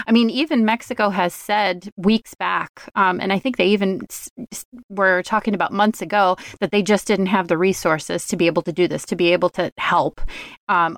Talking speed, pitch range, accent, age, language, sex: 210 wpm, 185-220 Hz, American, 30-49, English, female